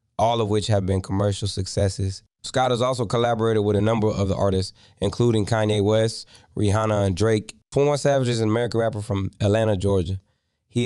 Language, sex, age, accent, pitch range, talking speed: English, male, 20-39, American, 95-110 Hz, 180 wpm